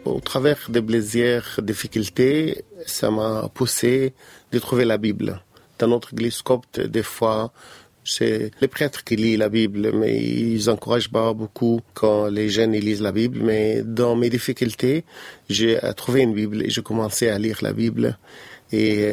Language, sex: French, male